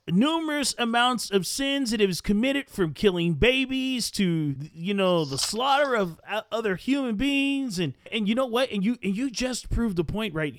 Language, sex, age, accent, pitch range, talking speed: English, male, 40-59, American, 160-235 Hz, 180 wpm